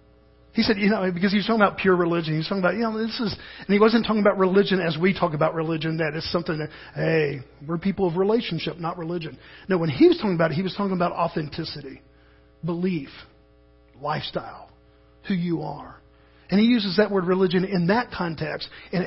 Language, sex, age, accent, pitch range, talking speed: English, male, 40-59, American, 155-195 Hz, 215 wpm